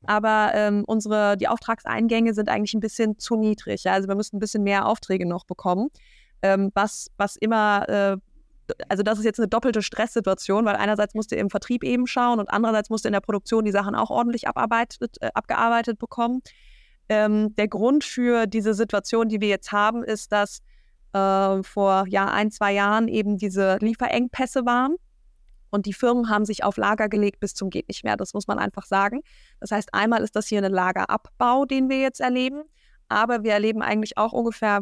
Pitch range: 205-230 Hz